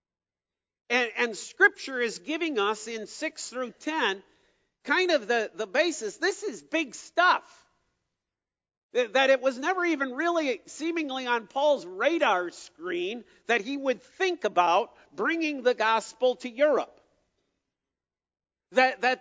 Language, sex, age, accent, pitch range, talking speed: English, male, 50-69, American, 240-330 Hz, 130 wpm